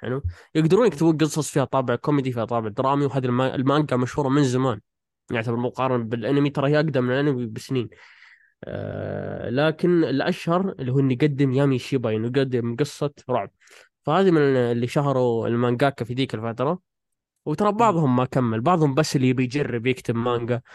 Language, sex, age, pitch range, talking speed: Arabic, male, 20-39, 125-150 Hz, 160 wpm